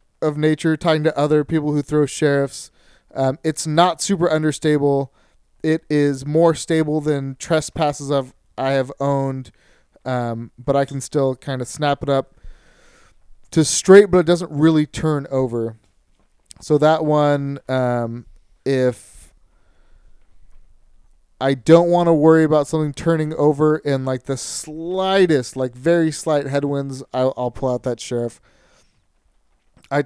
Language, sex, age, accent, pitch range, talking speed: English, male, 30-49, American, 130-155 Hz, 140 wpm